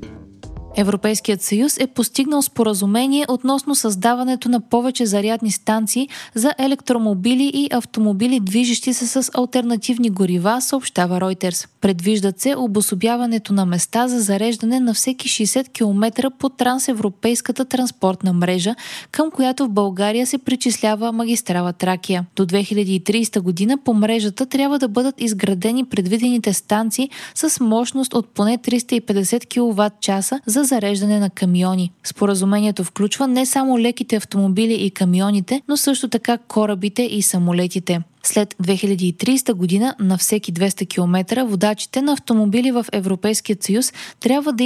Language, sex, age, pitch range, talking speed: Bulgarian, female, 20-39, 195-250 Hz, 130 wpm